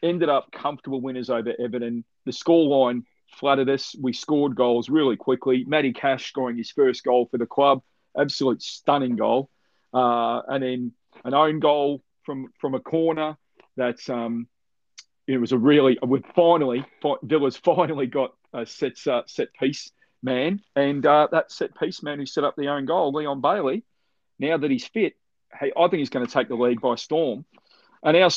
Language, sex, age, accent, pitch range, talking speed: English, male, 40-59, Australian, 125-170 Hz, 170 wpm